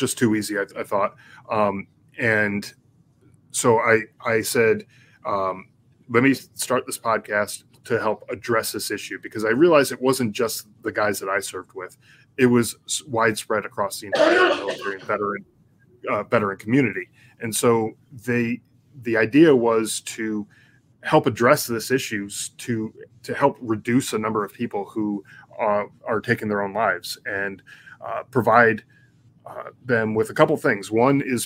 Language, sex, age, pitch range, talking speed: English, male, 20-39, 105-130 Hz, 160 wpm